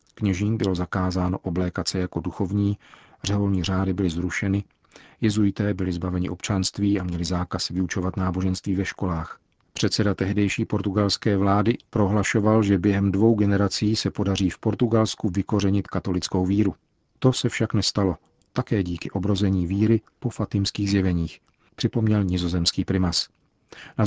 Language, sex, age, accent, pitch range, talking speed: Czech, male, 40-59, native, 95-105 Hz, 130 wpm